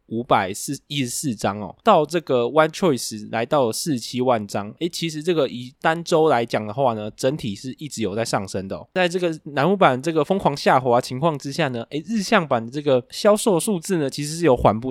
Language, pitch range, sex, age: Chinese, 110-150 Hz, male, 20-39